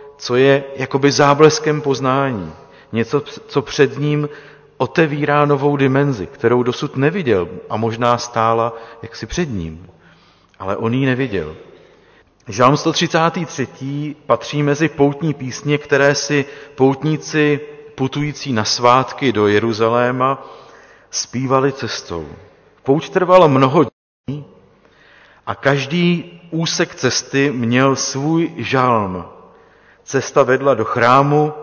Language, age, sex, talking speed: Czech, 40-59, male, 105 wpm